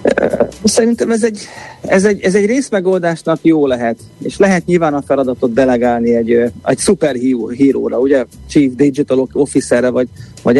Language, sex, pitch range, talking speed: Hungarian, male, 125-155 Hz, 145 wpm